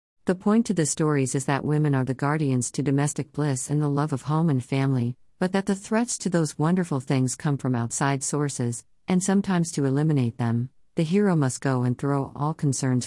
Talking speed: 210 wpm